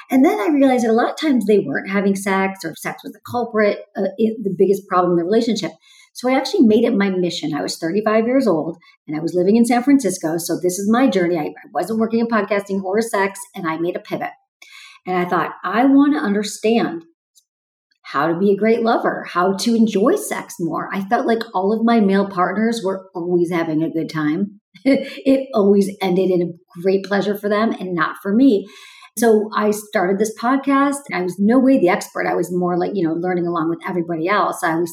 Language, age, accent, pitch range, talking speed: English, 40-59, American, 185-265 Hz, 225 wpm